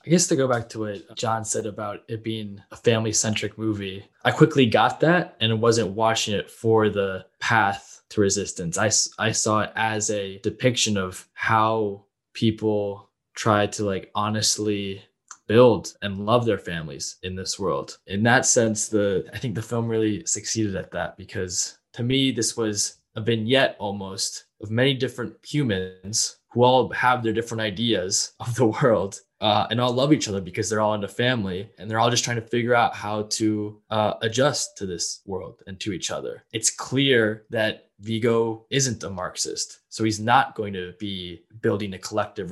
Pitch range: 100-115 Hz